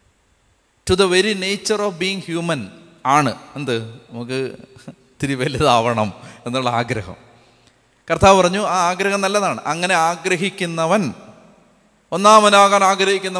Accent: native